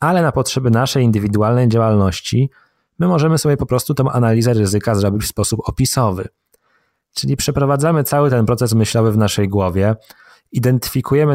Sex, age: male, 20-39